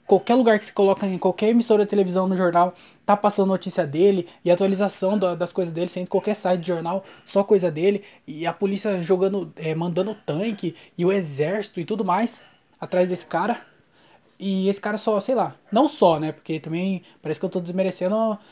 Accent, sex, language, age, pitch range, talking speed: Brazilian, male, Portuguese, 20-39, 175-210 Hz, 200 wpm